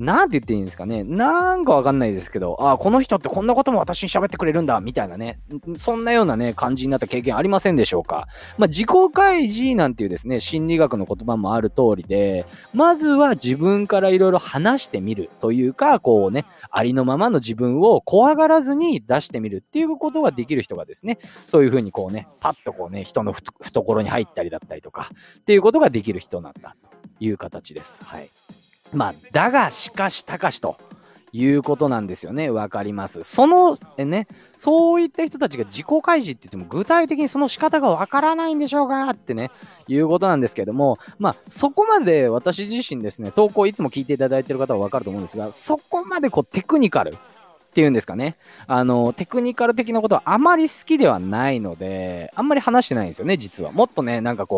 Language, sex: Japanese, male